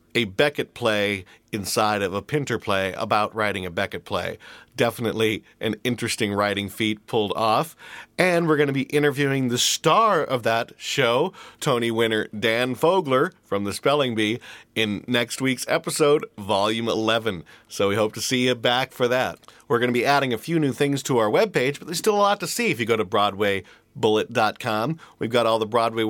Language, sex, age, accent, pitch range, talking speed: English, male, 40-59, American, 110-150 Hz, 190 wpm